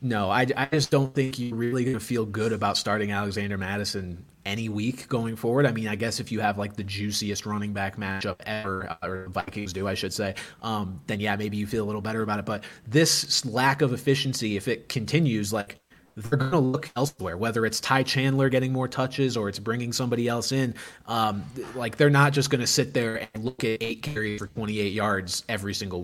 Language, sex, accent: English, male, American